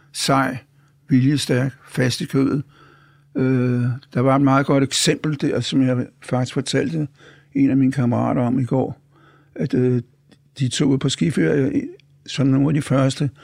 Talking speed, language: 145 wpm, Danish